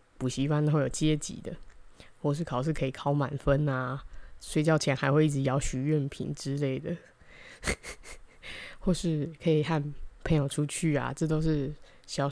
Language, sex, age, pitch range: Chinese, female, 20-39, 140-160 Hz